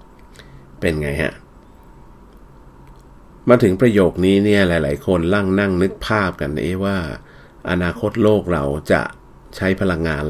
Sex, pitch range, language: male, 80-100 Hz, Thai